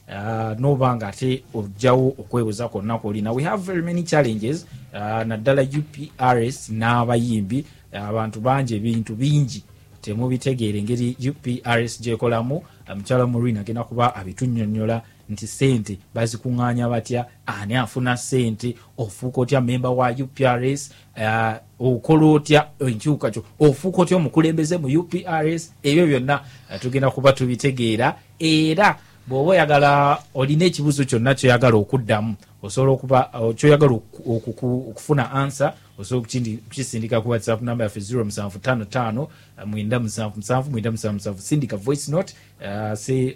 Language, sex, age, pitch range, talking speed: English, male, 30-49, 110-135 Hz, 125 wpm